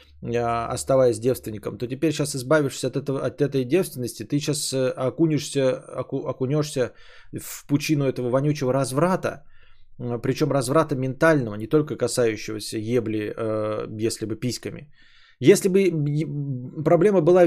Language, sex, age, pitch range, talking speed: Bulgarian, male, 20-39, 125-175 Hz, 120 wpm